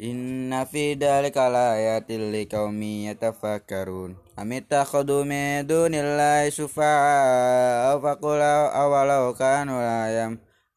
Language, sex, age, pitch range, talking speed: Indonesian, male, 20-39, 110-140 Hz, 85 wpm